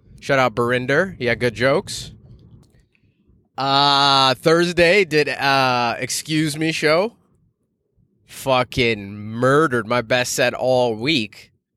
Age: 20-39